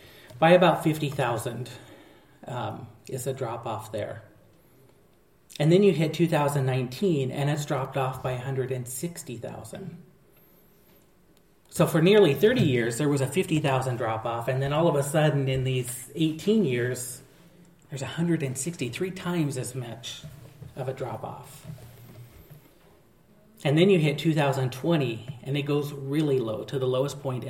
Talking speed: 140 wpm